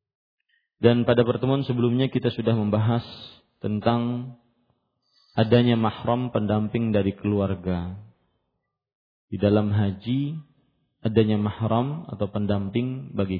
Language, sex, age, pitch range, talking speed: Malay, male, 40-59, 105-135 Hz, 95 wpm